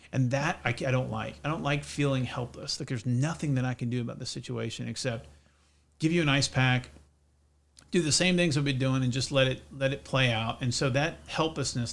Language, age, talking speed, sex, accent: English, 40-59, 230 wpm, male, American